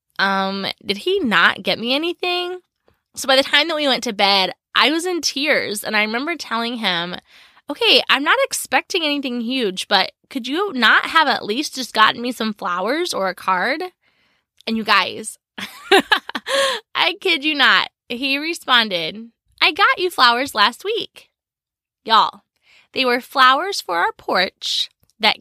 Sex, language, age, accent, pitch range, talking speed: female, English, 20-39, American, 215-315 Hz, 165 wpm